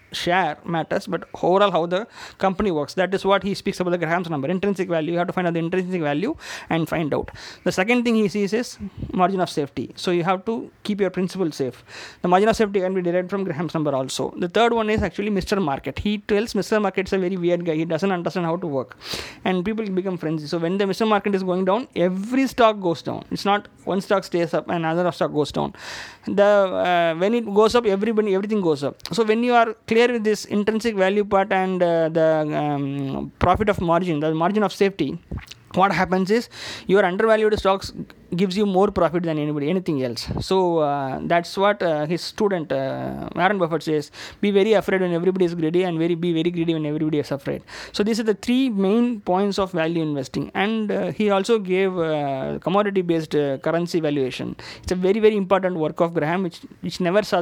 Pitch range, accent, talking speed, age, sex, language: 165-205 Hz, native, 220 wpm, 20-39, male, Tamil